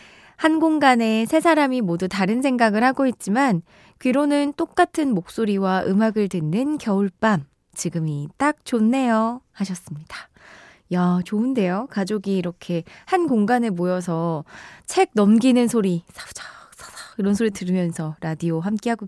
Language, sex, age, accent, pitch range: Korean, female, 20-39, native, 180-270 Hz